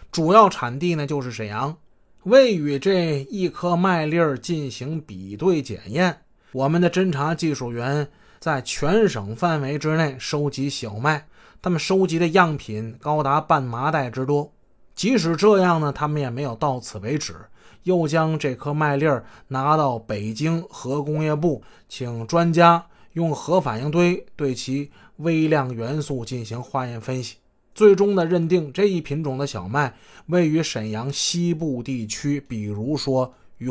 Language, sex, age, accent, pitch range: Chinese, male, 20-39, native, 130-170 Hz